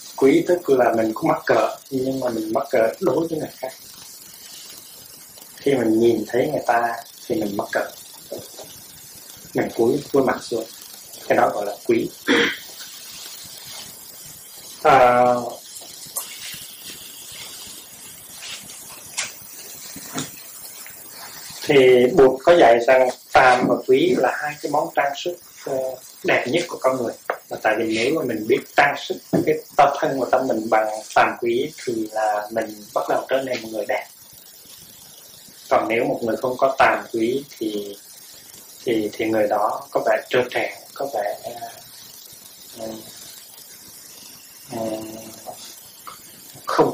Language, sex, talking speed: Vietnamese, male, 135 wpm